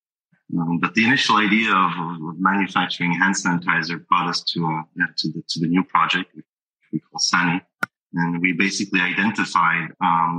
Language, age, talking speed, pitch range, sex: English, 30-49, 175 wpm, 85-95 Hz, male